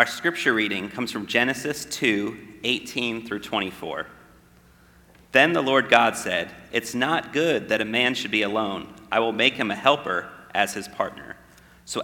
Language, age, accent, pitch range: English, 40-59, American, 105-140 Hz